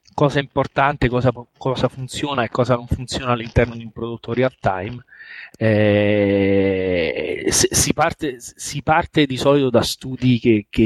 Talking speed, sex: 135 wpm, male